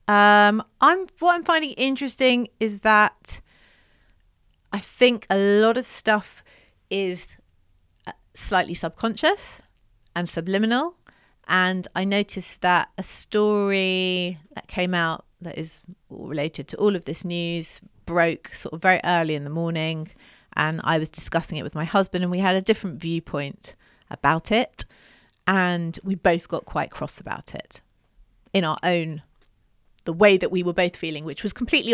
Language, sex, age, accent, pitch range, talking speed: English, female, 40-59, British, 165-210 Hz, 150 wpm